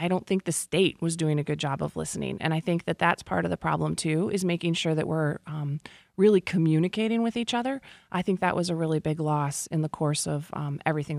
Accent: American